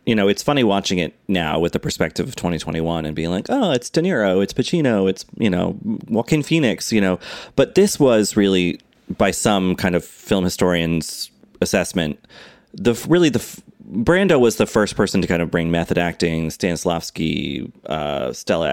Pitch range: 85-105 Hz